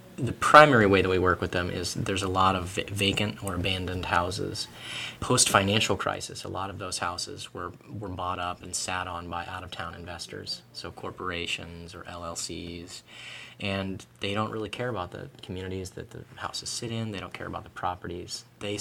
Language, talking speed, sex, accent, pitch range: English, 185 wpm, male, American, 90-110 Hz